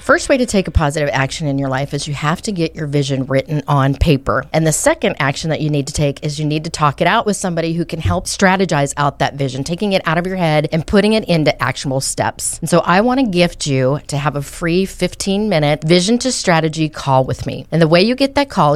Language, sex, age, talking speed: English, female, 40-59, 260 wpm